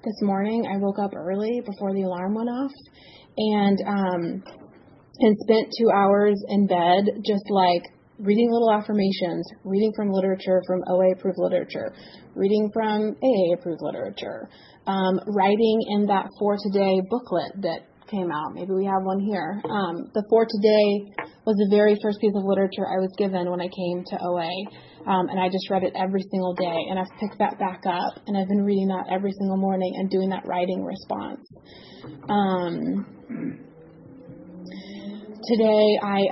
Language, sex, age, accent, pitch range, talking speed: English, female, 30-49, American, 185-210 Hz, 165 wpm